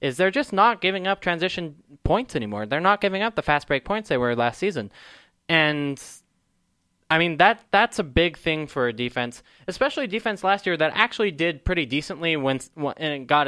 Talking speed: 200 wpm